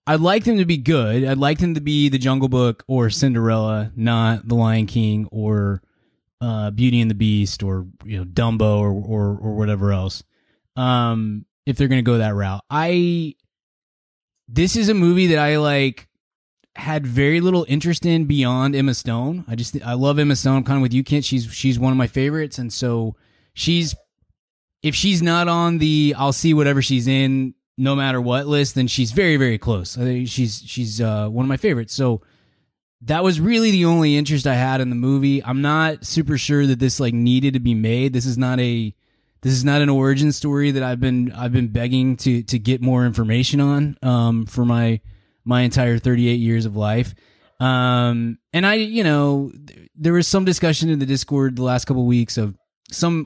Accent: American